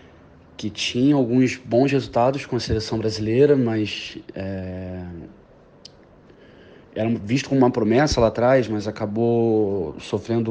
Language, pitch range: English, 105-125 Hz